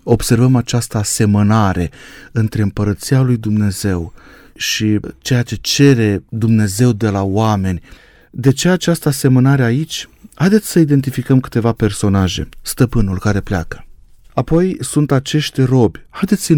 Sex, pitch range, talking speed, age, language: male, 95-130 Hz, 125 wpm, 30-49, Romanian